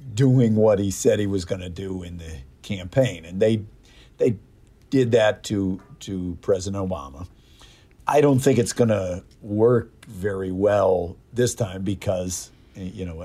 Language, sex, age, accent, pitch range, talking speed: English, male, 50-69, American, 95-120 Hz, 155 wpm